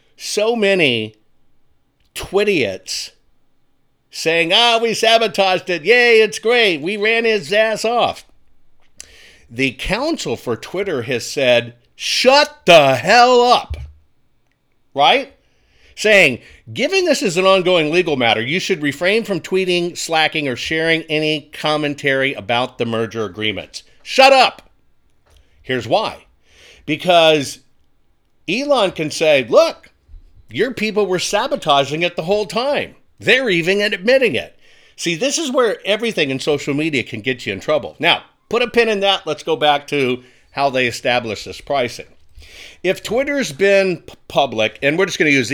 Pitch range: 125-210 Hz